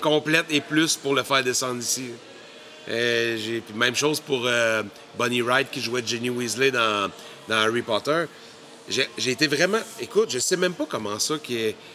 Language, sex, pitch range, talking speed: French, male, 120-150 Hz, 185 wpm